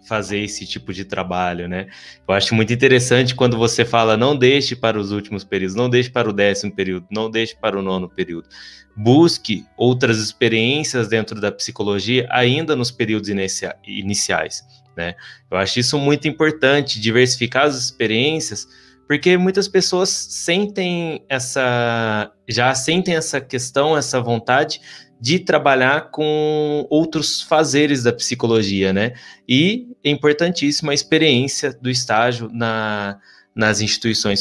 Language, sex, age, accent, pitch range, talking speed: Portuguese, male, 20-39, Brazilian, 105-140 Hz, 140 wpm